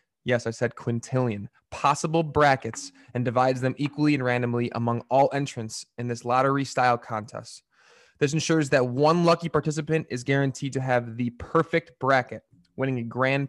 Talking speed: 160 wpm